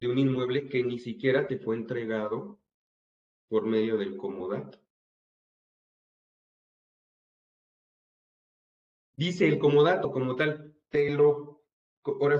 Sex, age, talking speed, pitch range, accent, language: male, 30-49, 100 wpm, 125-185 Hz, Mexican, Spanish